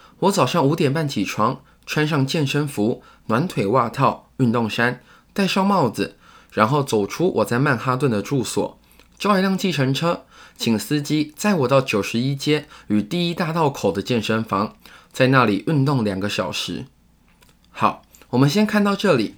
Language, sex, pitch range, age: Chinese, male, 110-155 Hz, 20-39